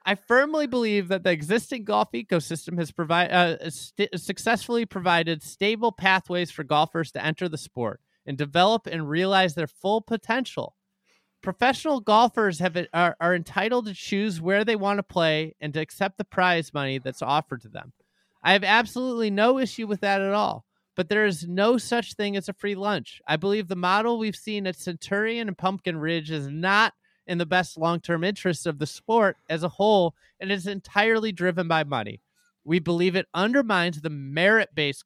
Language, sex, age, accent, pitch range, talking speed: English, male, 30-49, American, 165-205 Hz, 185 wpm